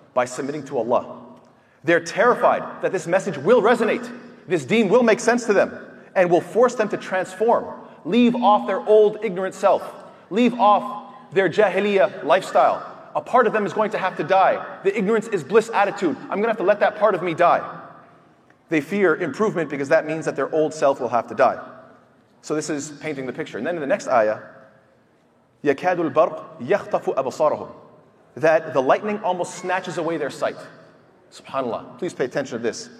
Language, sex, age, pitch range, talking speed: English, male, 30-49, 155-215 Hz, 190 wpm